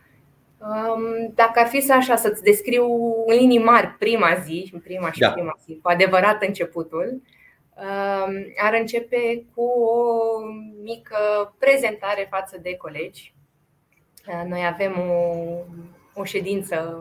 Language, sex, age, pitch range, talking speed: Romanian, female, 20-39, 180-220 Hz, 115 wpm